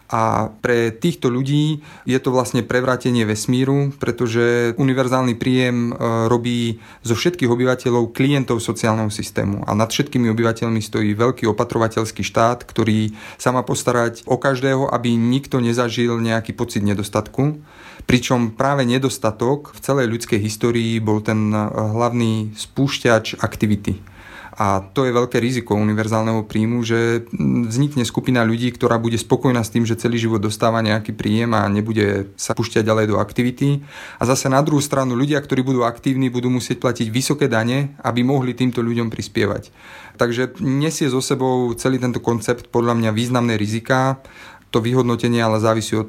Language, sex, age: Slovak, male, 30-49